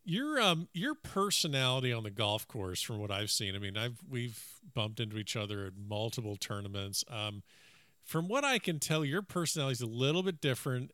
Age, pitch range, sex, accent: 50-69, 110-140 Hz, male, American